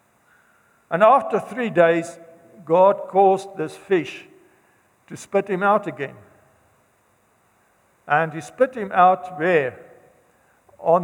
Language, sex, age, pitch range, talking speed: English, male, 60-79, 140-180 Hz, 110 wpm